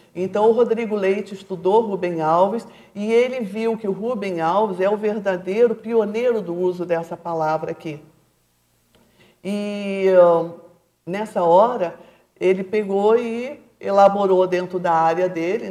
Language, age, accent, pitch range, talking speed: Portuguese, 50-69, Brazilian, 170-205 Hz, 130 wpm